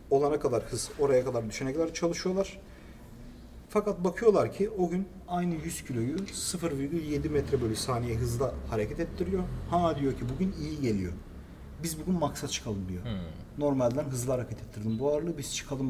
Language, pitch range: Turkish, 115-165 Hz